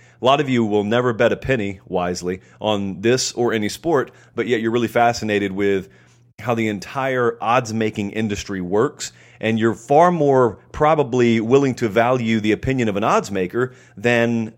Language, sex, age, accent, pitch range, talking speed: English, male, 30-49, American, 100-120 Hz, 170 wpm